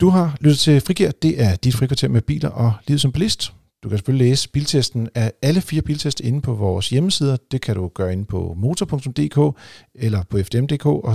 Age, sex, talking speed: 40-59, male, 210 wpm